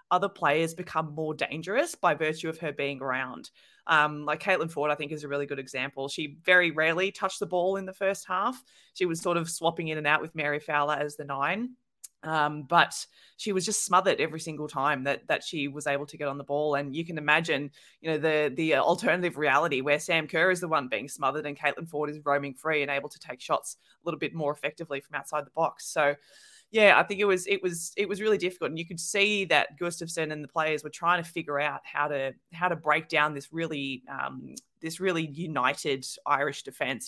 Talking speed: 230 wpm